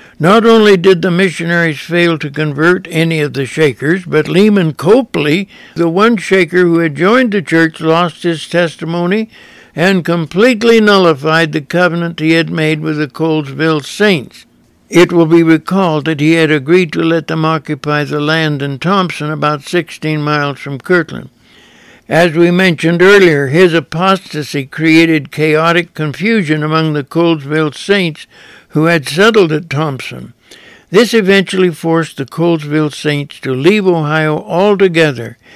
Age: 60-79